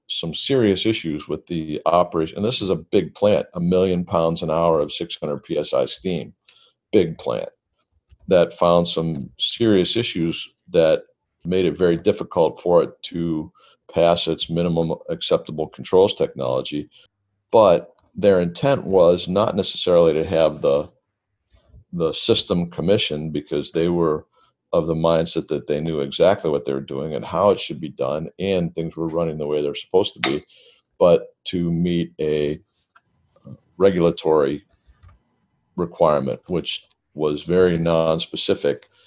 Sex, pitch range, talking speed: male, 80-95 Hz, 145 wpm